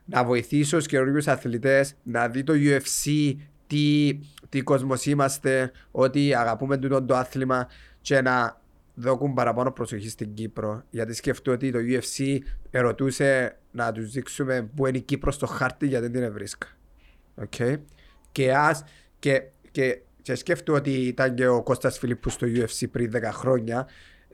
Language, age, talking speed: Greek, 30-49, 150 wpm